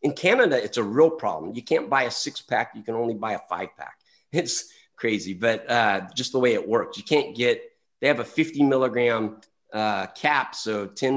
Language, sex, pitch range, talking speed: English, male, 115-155 Hz, 215 wpm